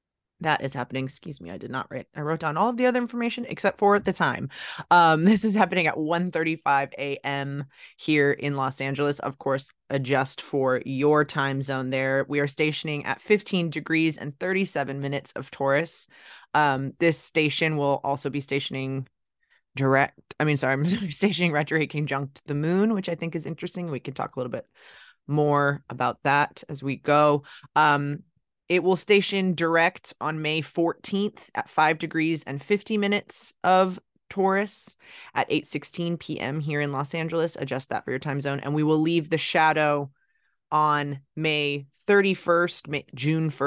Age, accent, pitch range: 20-39, American, 140-170 Hz